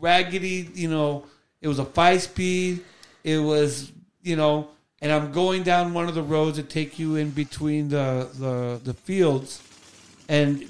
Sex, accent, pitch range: male, American, 140-180 Hz